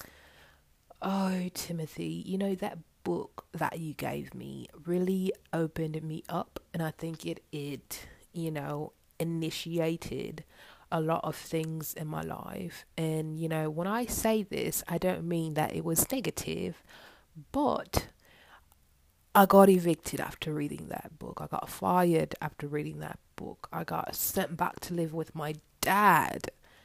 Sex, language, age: female, English, 20-39